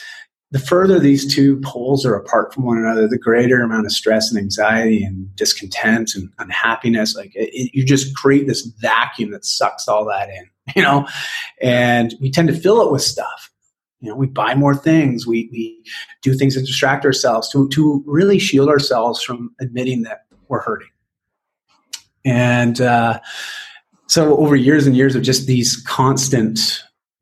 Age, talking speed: 30-49, 170 wpm